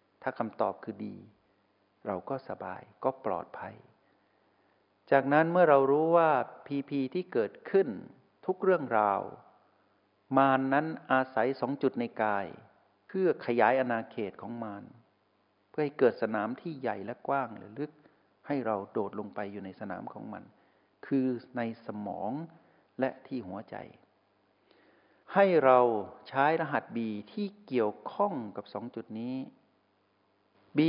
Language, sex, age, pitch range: Thai, male, 60-79, 100-140 Hz